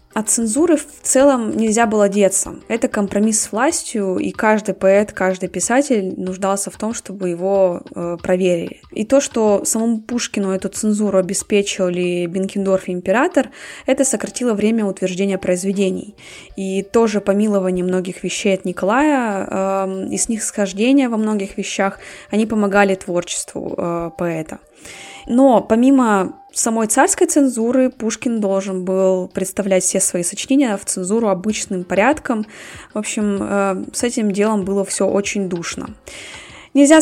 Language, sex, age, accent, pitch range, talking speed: Russian, female, 20-39, native, 190-230 Hz, 140 wpm